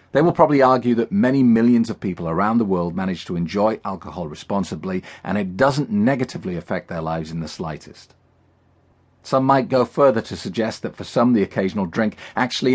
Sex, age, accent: male, 40-59, British